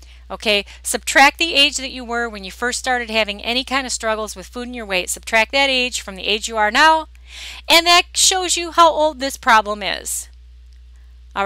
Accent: American